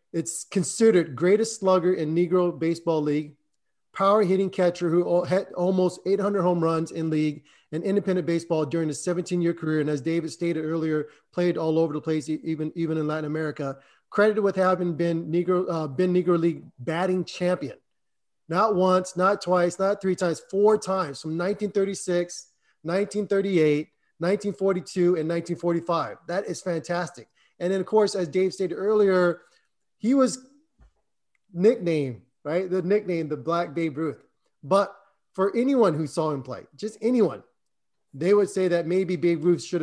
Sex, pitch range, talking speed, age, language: male, 155-185 Hz, 165 wpm, 30-49, English